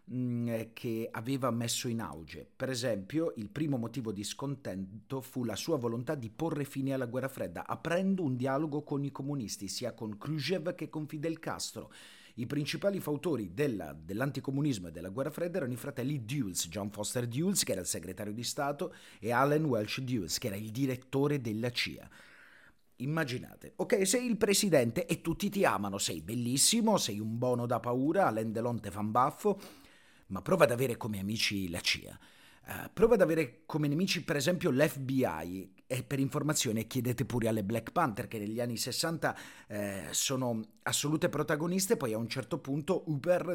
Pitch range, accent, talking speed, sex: 110-155 Hz, native, 170 wpm, male